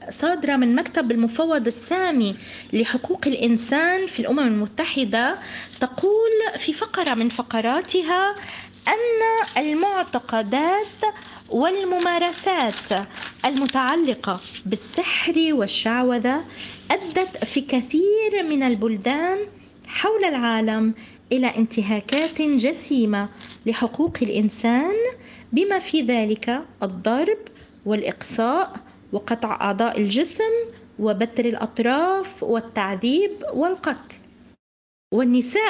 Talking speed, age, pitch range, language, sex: 75 wpm, 20-39, 230-360 Hz, Arabic, female